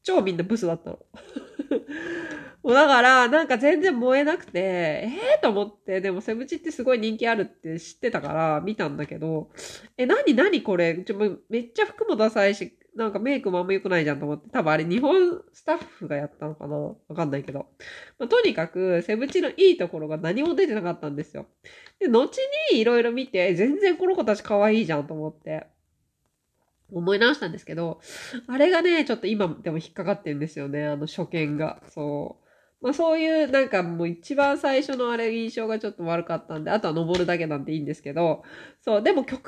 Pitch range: 160-255 Hz